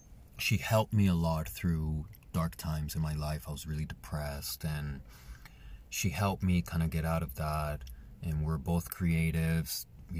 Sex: male